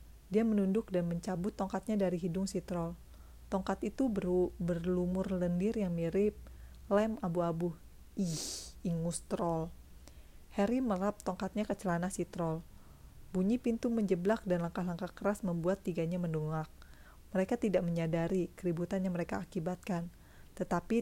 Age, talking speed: 30-49, 130 wpm